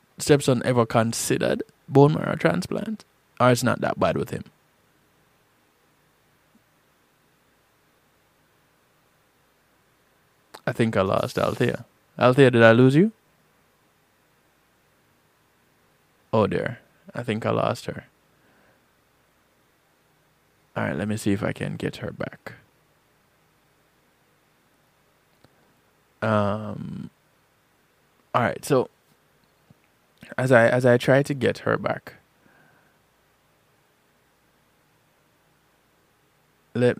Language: English